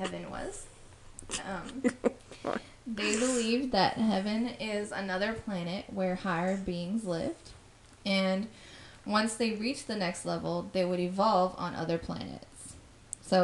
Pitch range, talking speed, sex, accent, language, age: 175-215 Hz, 125 wpm, female, American, English, 10-29